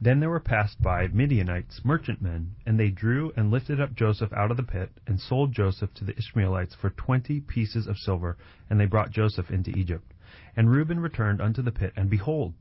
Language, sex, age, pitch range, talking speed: English, male, 30-49, 100-125 Hz, 205 wpm